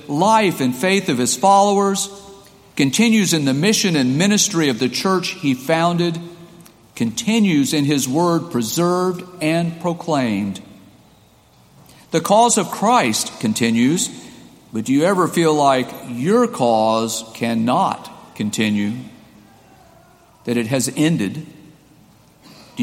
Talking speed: 115 wpm